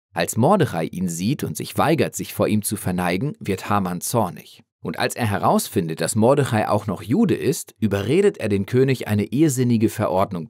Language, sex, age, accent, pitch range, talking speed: Spanish, male, 40-59, German, 100-125 Hz, 185 wpm